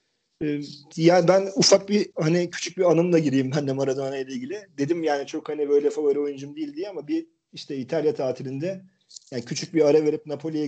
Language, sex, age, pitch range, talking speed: Turkish, male, 40-59, 135-165 Hz, 195 wpm